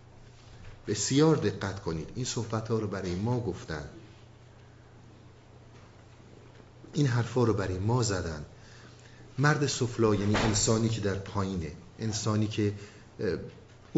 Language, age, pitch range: Persian, 50-69, 105-125 Hz